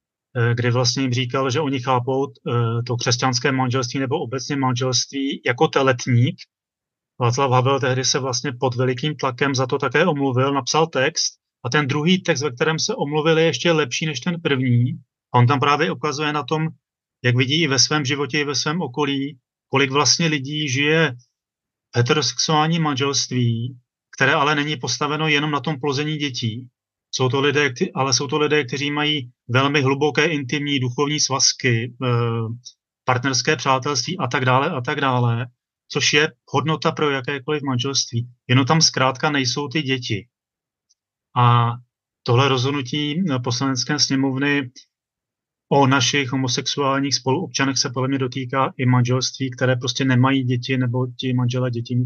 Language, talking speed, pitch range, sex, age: Czech, 150 wpm, 125-150 Hz, male, 30-49